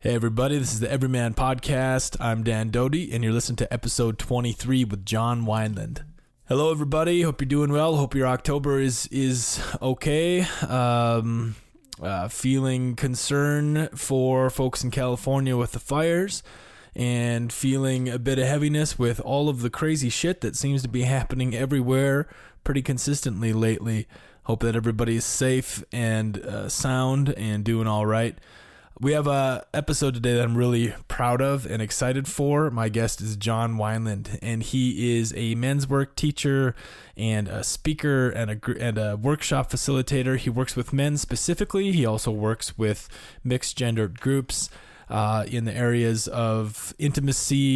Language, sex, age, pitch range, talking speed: English, male, 20-39, 115-135 Hz, 160 wpm